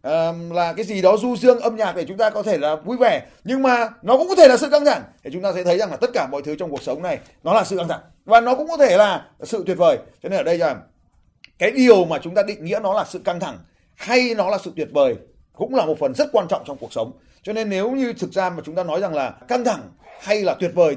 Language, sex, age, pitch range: Vietnamese, male, 30-49, 190-265 Hz